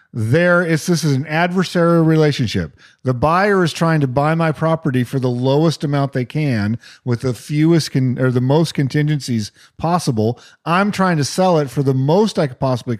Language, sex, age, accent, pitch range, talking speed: English, male, 40-59, American, 130-170 Hz, 190 wpm